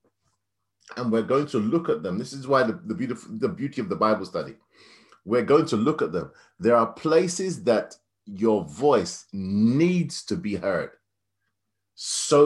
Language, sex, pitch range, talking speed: English, male, 110-160 Hz, 175 wpm